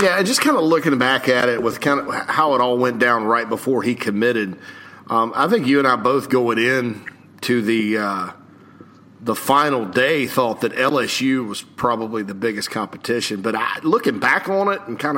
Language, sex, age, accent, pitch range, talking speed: English, male, 40-59, American, 115-140 Hz, 205 wpm